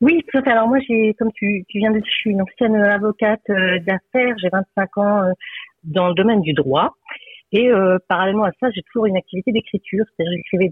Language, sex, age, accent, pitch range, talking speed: French, female, 40-59, French, 160-210 Hz, 200 wpm